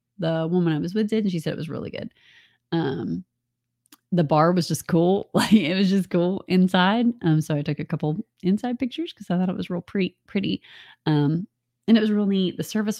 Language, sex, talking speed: English, female, 225 wpm